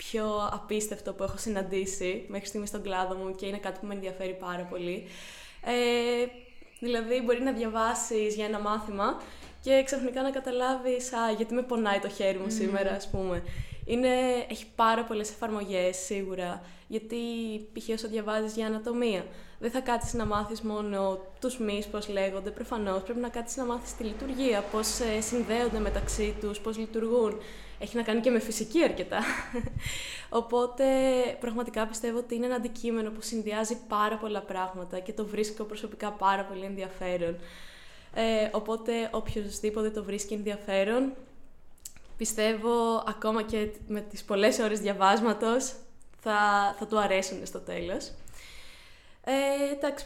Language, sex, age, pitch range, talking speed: Greek, female, 20-39, 205-240 Hz, 145 wpm